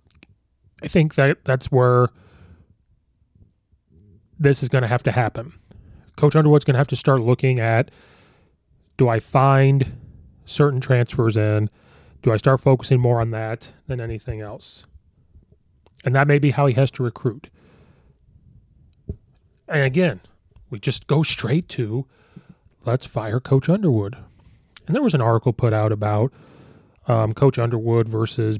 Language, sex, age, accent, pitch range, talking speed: English, male, 30-49, American, 110-135 Hz, 145 wpm